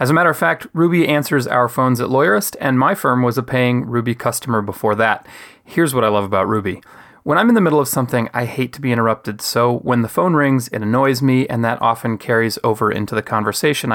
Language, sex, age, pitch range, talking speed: English, male, 30-49, 115-145 Hz, 235 wpm